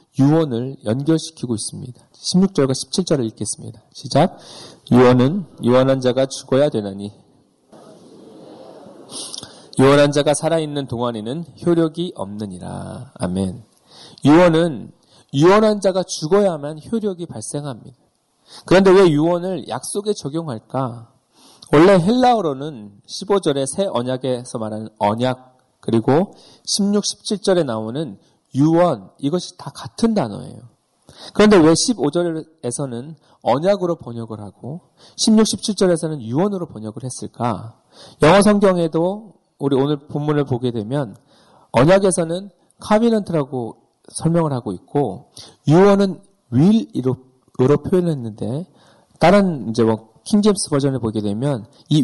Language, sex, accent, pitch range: Korean, male, native, 125-180 Hz